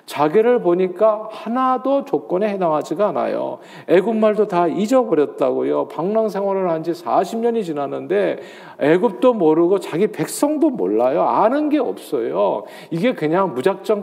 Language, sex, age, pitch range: Korean, male, 40-59, 135-195 Hz